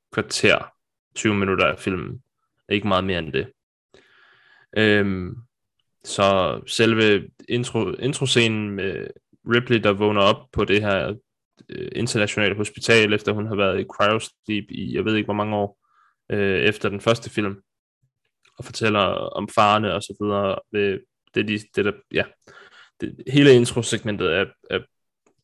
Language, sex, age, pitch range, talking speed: Danish, male, 20-39, 105-115 Hz, 130 wpm